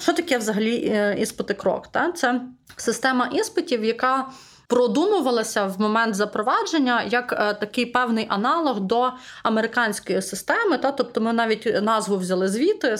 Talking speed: 125 wpm